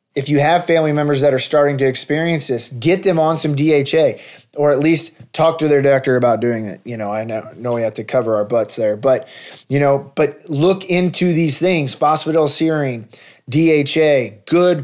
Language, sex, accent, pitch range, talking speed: English, male, American, 140-160 Hz, 200 wpm